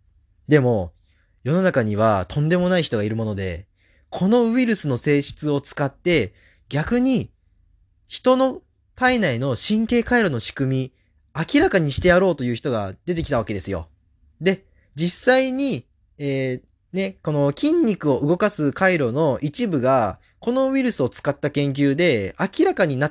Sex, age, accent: male, 20-39, native